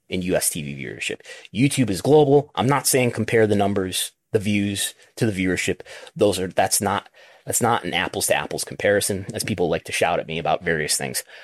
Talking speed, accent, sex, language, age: 205 wpm, American, male, English, 30-49